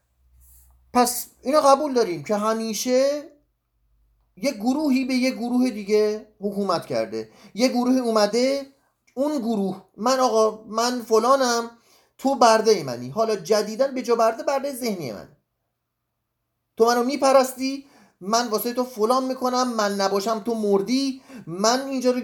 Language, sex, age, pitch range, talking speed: Persian, male, 30-49, 190-255 Hz, 130 wpm